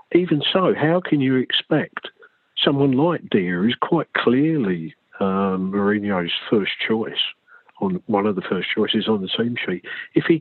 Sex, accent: male, British